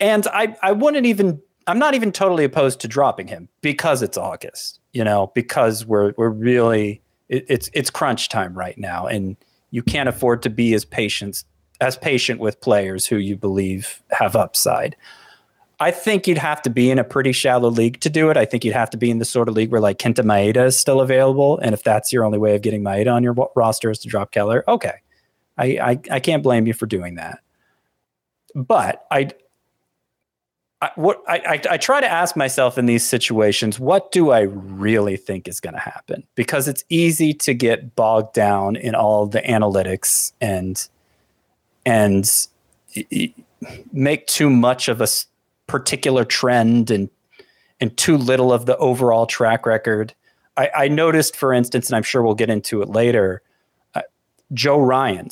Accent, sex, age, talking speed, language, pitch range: American, male, 30-49, 185 wpm, English, 105-135 Hz